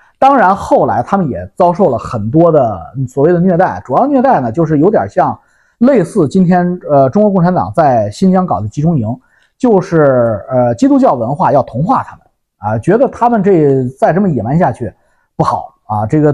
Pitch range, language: 130-195 Hz, Chinese